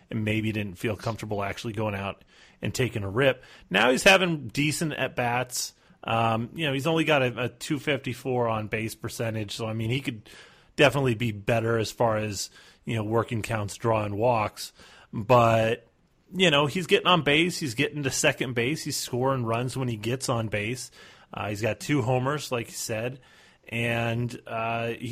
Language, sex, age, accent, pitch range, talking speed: English, male, 30-49, American, 115-135 Hz, 185 wpm